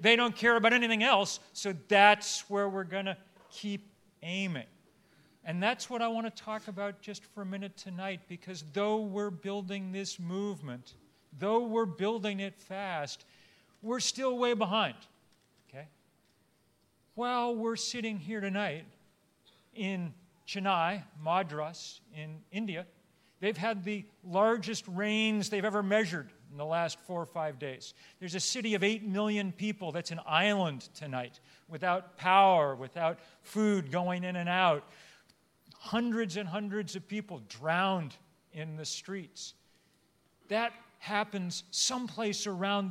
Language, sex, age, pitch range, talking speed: English, male, 50-69, 175-210 Hz, 140 wpm